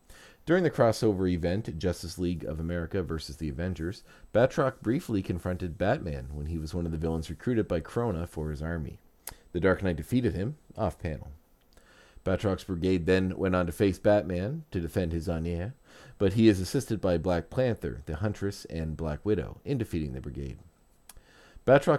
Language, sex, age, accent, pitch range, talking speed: English, male, 40-59, American, 80-105 Hz, 175 wpm